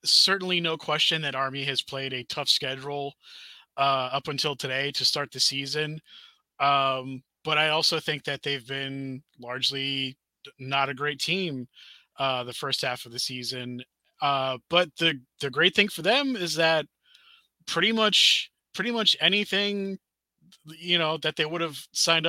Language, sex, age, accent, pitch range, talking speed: English, male, 20-39, American, 135-165 Hz, 160 wpm